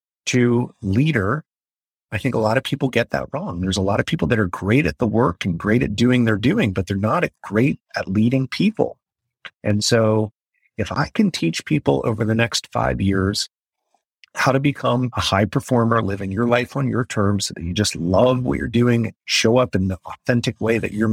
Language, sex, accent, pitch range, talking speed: English, male, American, 105-130 Hz, 210 wpm